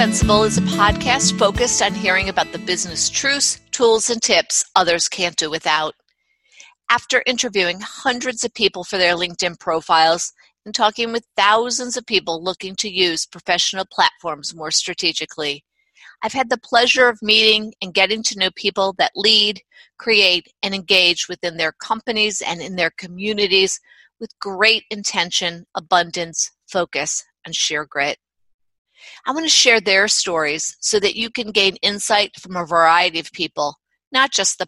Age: 50-69